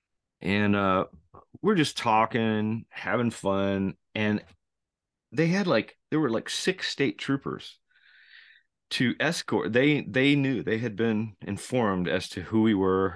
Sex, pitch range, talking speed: male, 95-130 Hz, 140 wpm